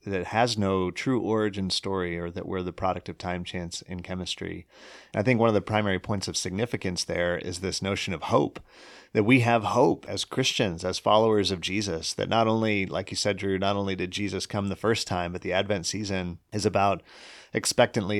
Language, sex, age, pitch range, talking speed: English, male, 30-49, 90-105 Hz, 210 wpm